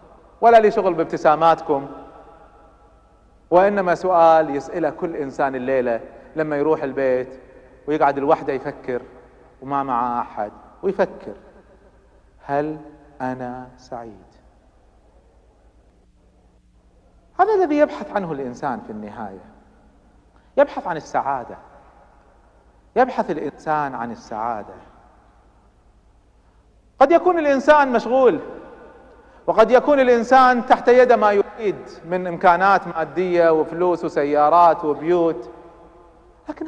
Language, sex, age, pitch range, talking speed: Arabic, male, 40-59, 135-225 Hz, 90 wpm